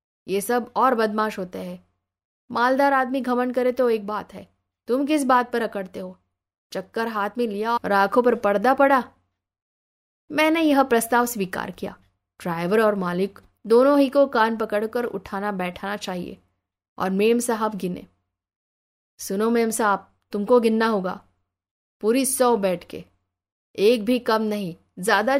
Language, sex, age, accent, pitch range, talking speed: Hindi, female, 20-39, native, 180-235 Hz, 105 wpm